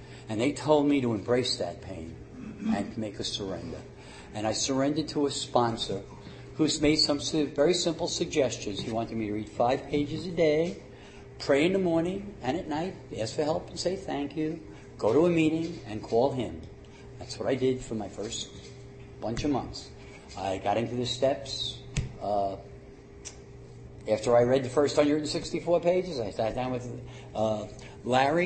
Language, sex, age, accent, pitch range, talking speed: English, male, 60-79, American, 115-150 Hz, 175 wpm